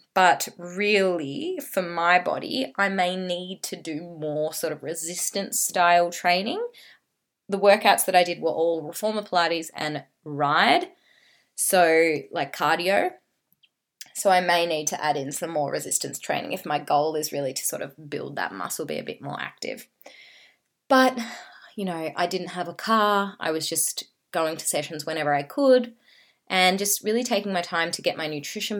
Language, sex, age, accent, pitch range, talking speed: English, female, 20-39, Australian, 165-205 Hz, 175 wpm